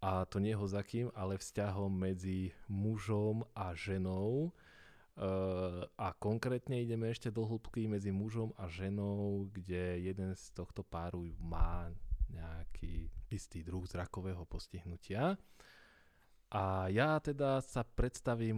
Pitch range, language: 90-105 Hz, Slovak